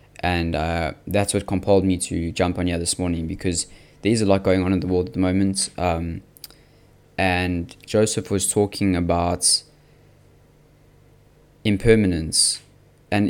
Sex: male